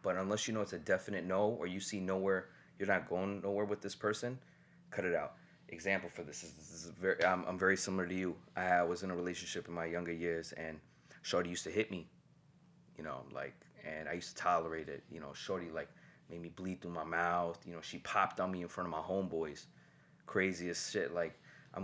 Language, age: English, 20-39